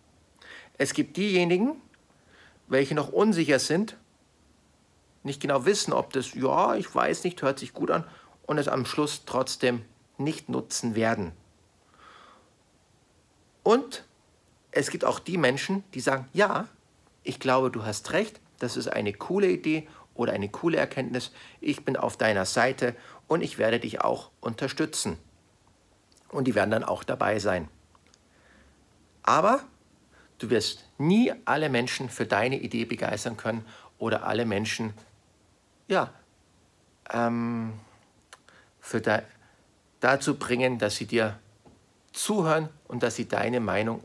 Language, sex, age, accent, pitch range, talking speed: German, male, 50-69, German, 105-140 Hz, 130 wpm